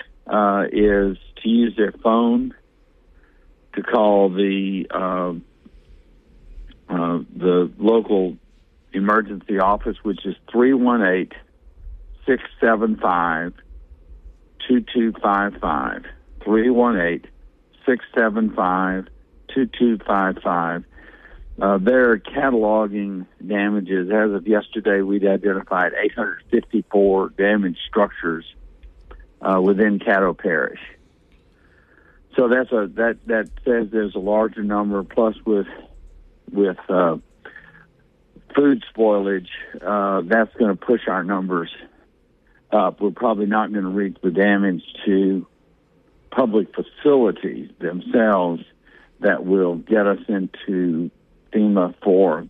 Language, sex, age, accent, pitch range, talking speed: English, male, 60-79, American, 90-110 Hz, 90 wpm